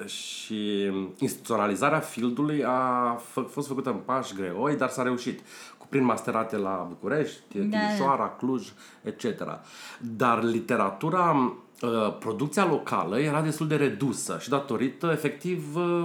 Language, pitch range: Romanian, 110-145 Hz